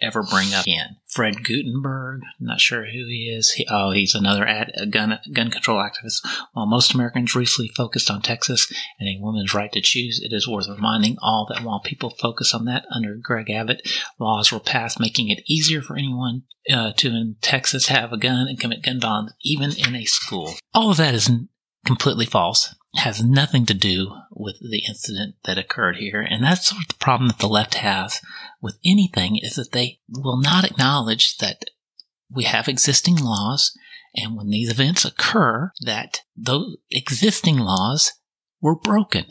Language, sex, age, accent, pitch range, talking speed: English, male, 30-49, American, 110-150 Hz, 190 wpm